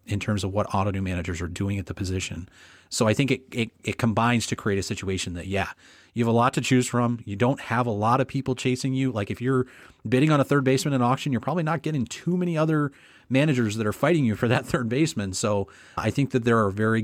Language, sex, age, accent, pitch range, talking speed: English, male, 30-49, American, 100-125 Hz, 260 wpm